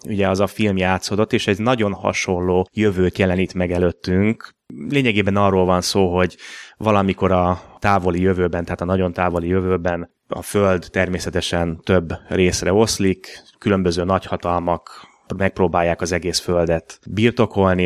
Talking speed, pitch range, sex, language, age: 135 wpm, 85-95 Hz, male, Hungarian, 30-49